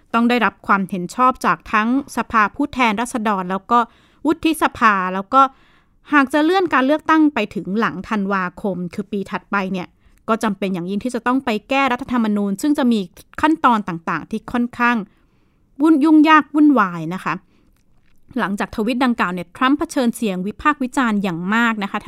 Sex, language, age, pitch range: female, Thai, 20-39, 195-255 Hz